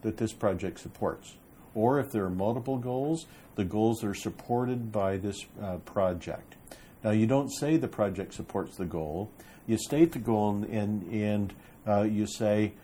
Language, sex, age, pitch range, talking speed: English, male, 50-69, 100-120 Hz, 170 wpm